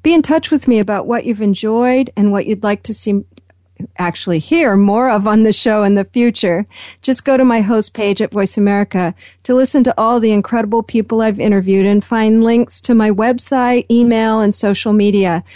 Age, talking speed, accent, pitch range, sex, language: 40-59, 205 wpm, American, 195-240 Hz, female, English